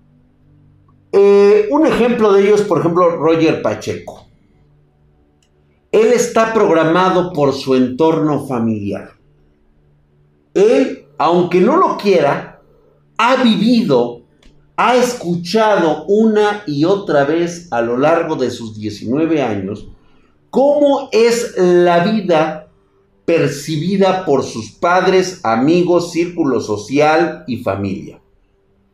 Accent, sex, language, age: Mexican, male, Spanish, 50-69